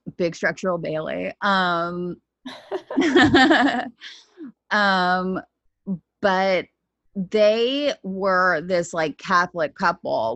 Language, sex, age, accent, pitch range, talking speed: English, female, 20-39, American, 155-190 Hz, 70 wpm